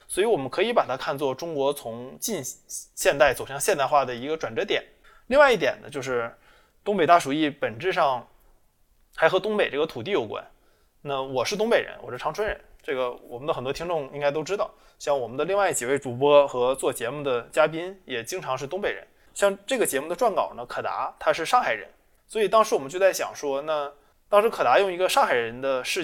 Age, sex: 20-39, male